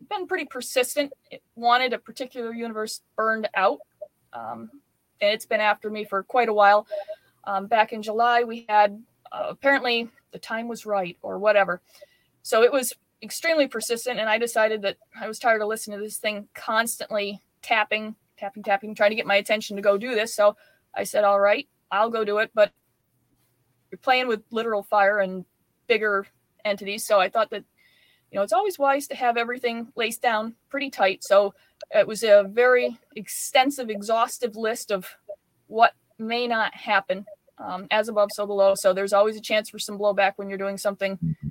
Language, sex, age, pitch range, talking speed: English, female, 20-39, 205-250 Hz, 185 wpm